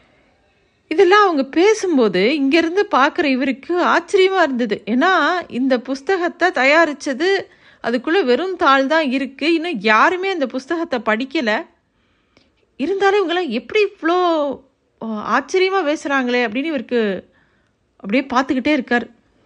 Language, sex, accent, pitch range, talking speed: Tamil, female, native, 225-325 Hz, 95 wpm